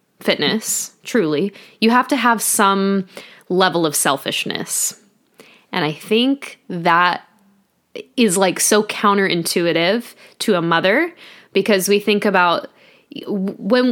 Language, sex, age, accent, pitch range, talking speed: English, female, 10-29, American, 180-225 Hz, 110 wpm